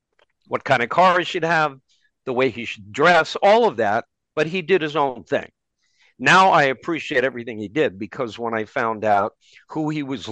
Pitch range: 125-155 Hz